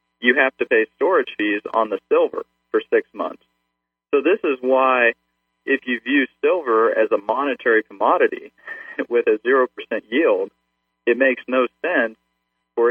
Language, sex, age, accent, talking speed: English, male, 40-59, American, 155 wpm